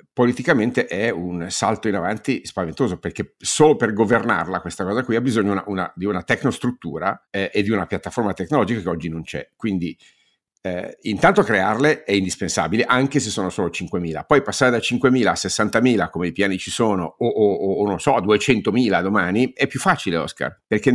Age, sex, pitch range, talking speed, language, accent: 50-69, male, 95-120 Hz, 190 wpm, Italian, native